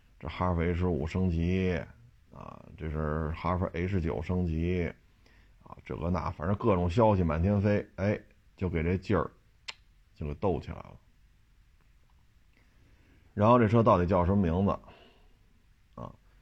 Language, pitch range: Chinese, 85-105 Hz